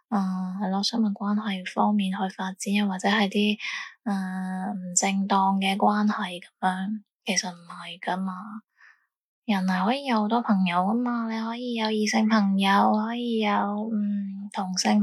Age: 10-29